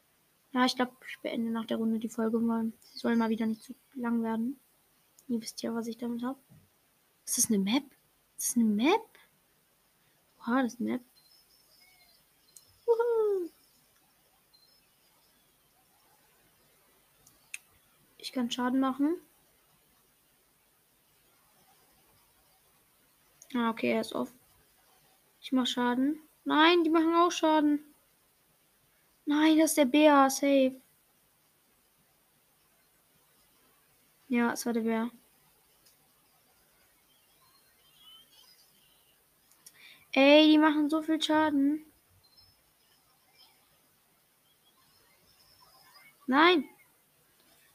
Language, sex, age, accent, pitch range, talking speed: English, female, 20-39, German, 235-310 Hz, 95 wpm